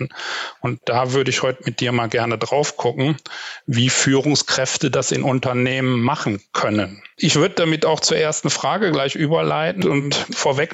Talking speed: 160 wpm